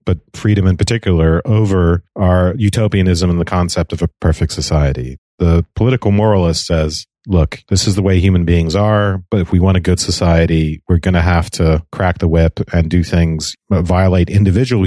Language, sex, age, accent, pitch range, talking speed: English, male, 40-59, American, 80-95 Hz, 190 wpm